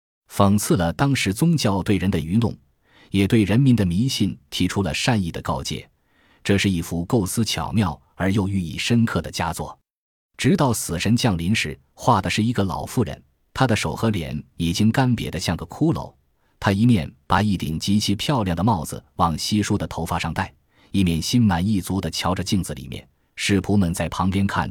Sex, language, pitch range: male, Chinese, 85-110 Hz